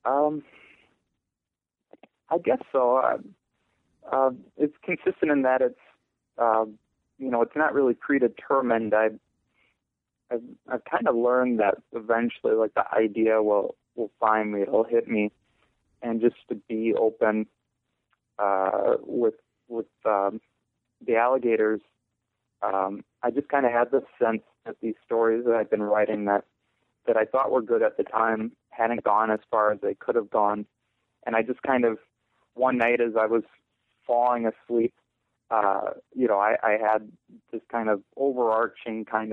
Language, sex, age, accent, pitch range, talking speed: English, male, 30-49, American, 110-125 Hz, 165 wpm